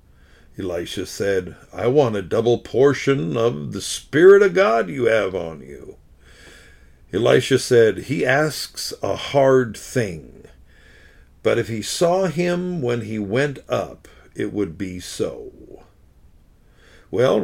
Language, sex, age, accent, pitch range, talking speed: English, male, 50-69, American, 105-165 Hz, 125 wpm